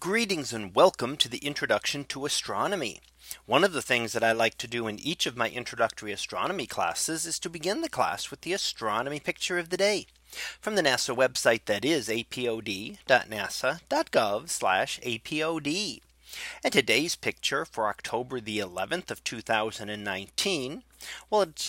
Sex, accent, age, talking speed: male, American, 40-59, 145 wpm